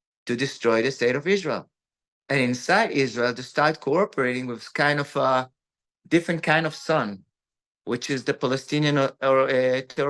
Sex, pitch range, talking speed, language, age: male, 125-150 Hz, 170 wpm, English, 30-49